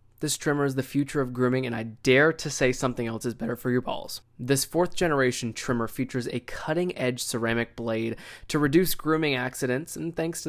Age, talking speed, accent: 20-39, 205 wpm, American